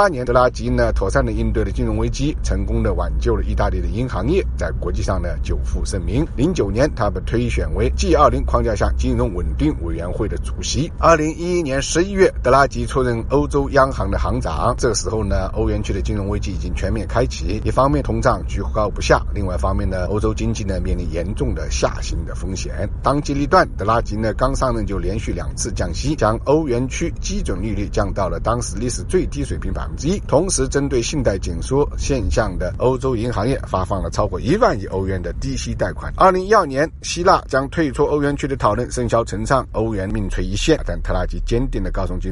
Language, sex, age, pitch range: Chinese, male, 50-69, 90-125 Hz